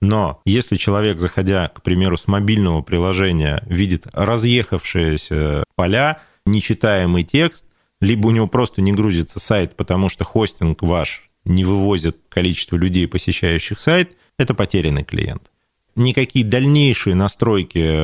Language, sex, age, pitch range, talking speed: Russian, male, 30-49, 90-110 Hz, 125 wpm